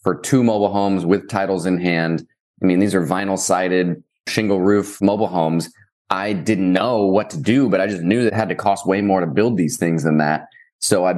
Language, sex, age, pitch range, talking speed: English, male, 20-39, 95-110 Hz, 220 wpm